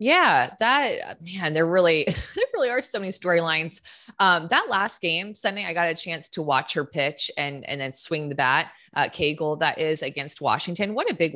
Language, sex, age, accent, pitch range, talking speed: English, female, 20-39, American, 145-180 Hz, 205 wpm